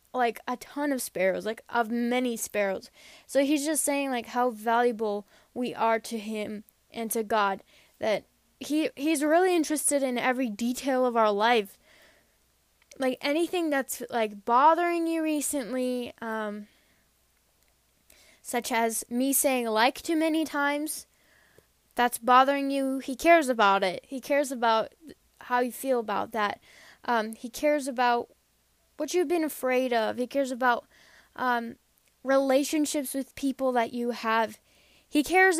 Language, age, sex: English, 10-29, female